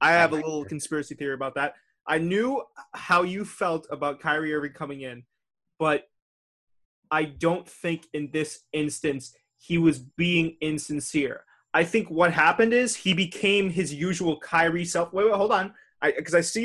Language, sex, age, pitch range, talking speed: English, male, 20-39, 150-190 Hz, 170 wpm